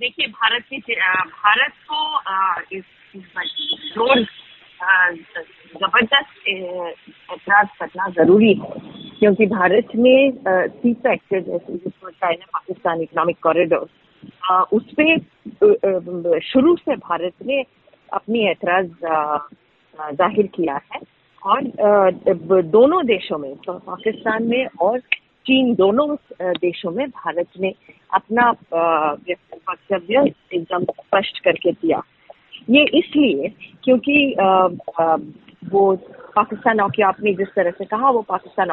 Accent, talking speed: native, 100 wpm